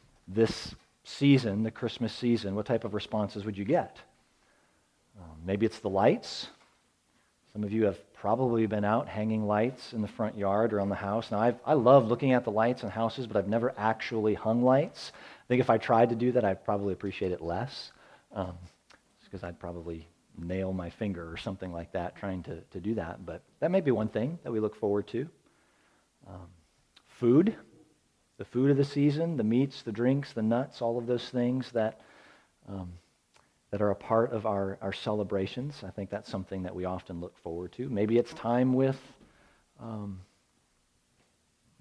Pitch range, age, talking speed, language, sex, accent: 95-120 Hz, 40-59, 190 wpm, English, male, American